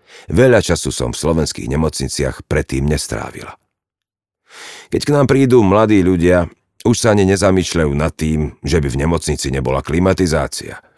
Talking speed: 140 wpm